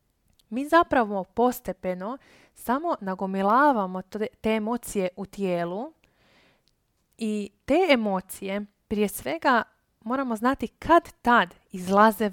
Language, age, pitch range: Croatian, 20-39, 195-255 Hz